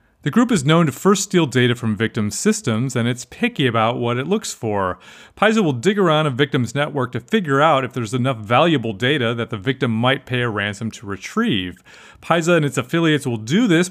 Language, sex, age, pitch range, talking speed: English, male, 30-49, 115-165 Hz, 215 wpm